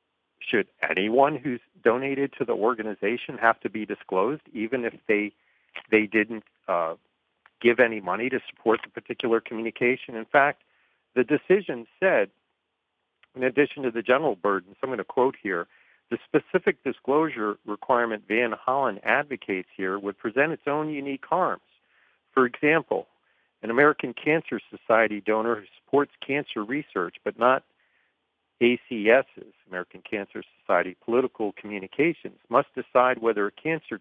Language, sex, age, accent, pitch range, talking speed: English, male, 50-69, American, 100-130 Hz, 140 wpm